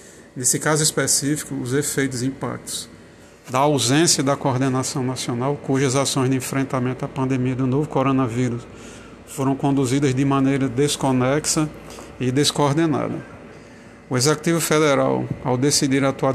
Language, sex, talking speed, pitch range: Portuguese, male, 125 wpm, 130-145 Hz